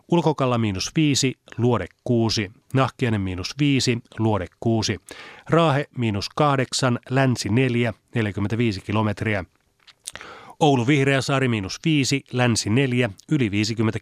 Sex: male